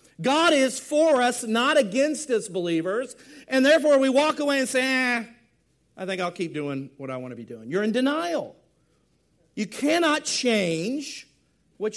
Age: 50-69